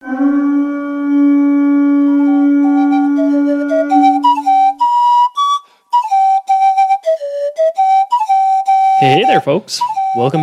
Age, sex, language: 20-39, male, English